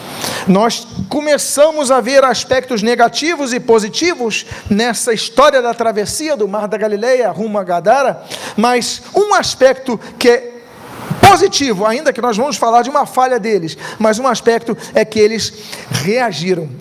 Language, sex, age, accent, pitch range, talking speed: Portuguese, male, 40-59, Brazilian, 205-255 Hz, 145 wpm